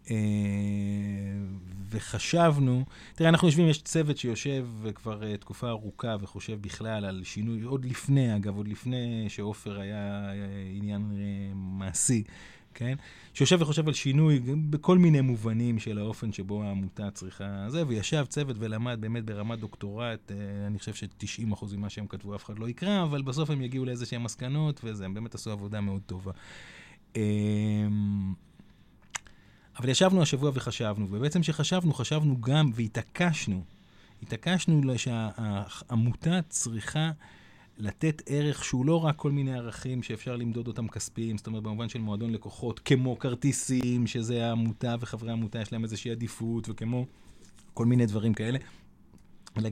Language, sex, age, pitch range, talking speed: Hebrew, male, 20-39, 105-130 Hz, 135 wpm